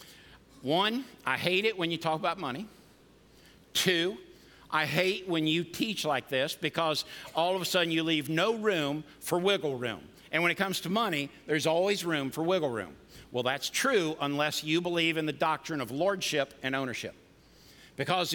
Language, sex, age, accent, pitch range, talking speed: English, male, 50-69, American, 135-175 Hz, 180 wpm